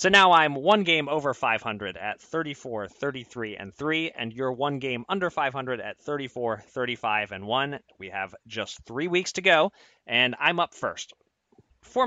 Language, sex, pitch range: English, male, 120-160 Hz